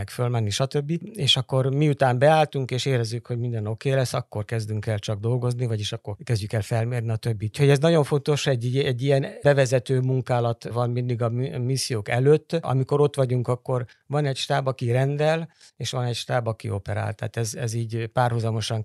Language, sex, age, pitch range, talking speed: Hungarian, male, 50-69, 115-140 Hz, 185 wpm